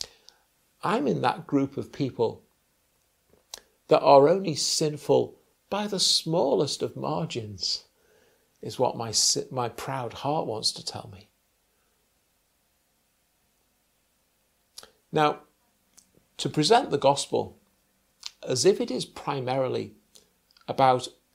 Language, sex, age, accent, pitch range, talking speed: English, male, 50-69, British, 120-155 Hz, 100 wpm